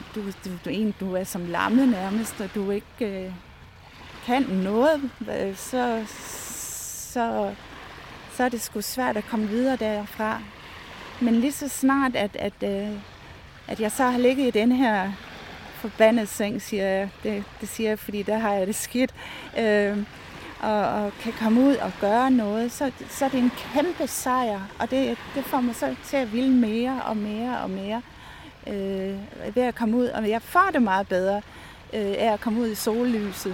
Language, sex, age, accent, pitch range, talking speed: Danish, female, 30-49, native, 205-250 Hz, 185 wpm